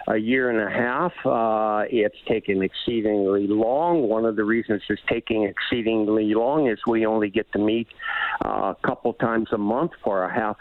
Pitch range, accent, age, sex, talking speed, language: 110-125 Hz, American, 60-79, male, 185 wpm, English